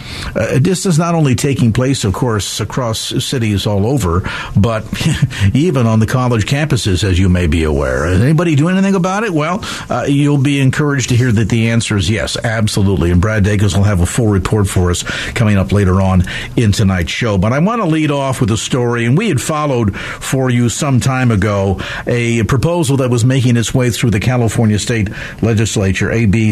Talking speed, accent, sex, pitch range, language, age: 205 wpm, American, male, 110-140 Hz, English, 50-69